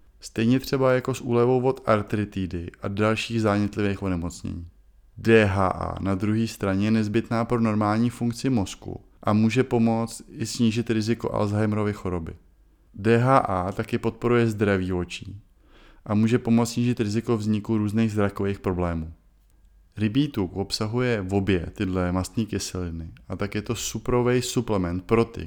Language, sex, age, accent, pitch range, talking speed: Czech, male, 20-39, native, 95-120 Hz, 140 wpm